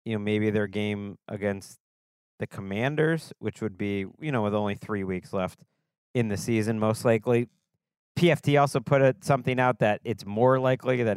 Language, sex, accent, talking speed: English, male, American, 175 wpm